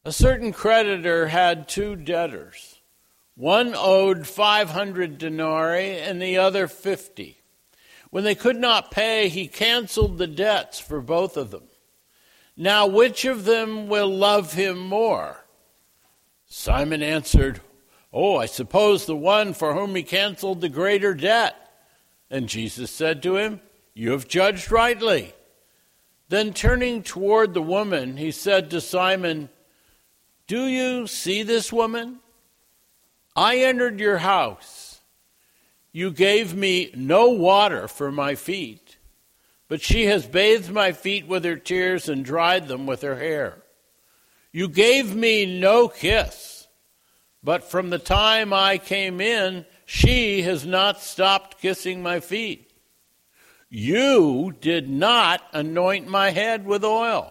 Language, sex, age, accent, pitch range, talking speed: English, male, 60-79, American, 175-210 Hz, 130 wpm